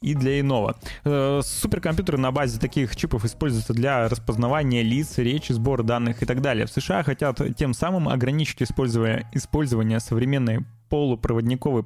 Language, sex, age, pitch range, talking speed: Russian, male, 20-39, 120-150 Hz, 140 wpm